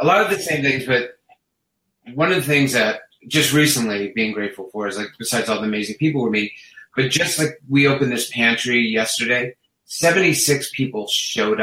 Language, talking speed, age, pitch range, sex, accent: English, 190 wpm, 30-49, 115-140 Hz, male, American